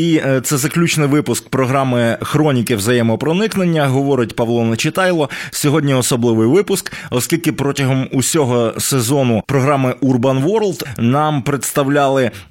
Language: Ukrainian